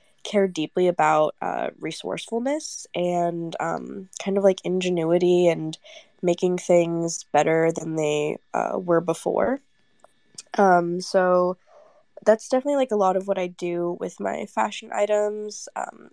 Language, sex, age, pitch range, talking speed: English, female, 10-29, 170-215 Hz, 135 wpm